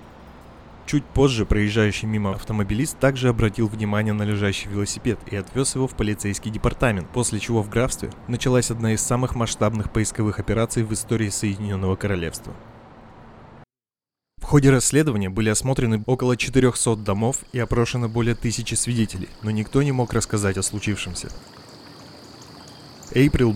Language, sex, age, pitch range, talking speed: Russian, male, 20-39, 105-125 Hz, 135 wpm